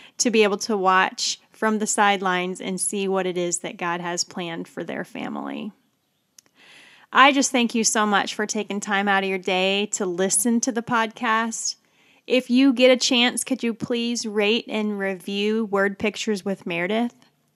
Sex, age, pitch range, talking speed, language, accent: female, 10-29, 190-240 Hz, 180 wpm, English, American